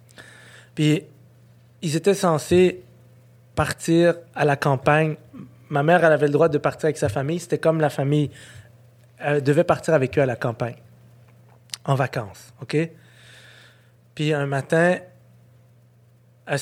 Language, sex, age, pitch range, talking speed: French, male, 20-39, 120-140 Hz, 135 wpm